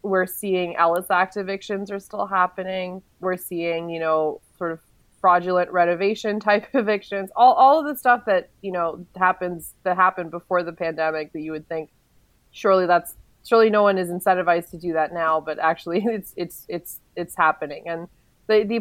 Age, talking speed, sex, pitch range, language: 20-39, 180 wpm, female, 165-195 Hz, English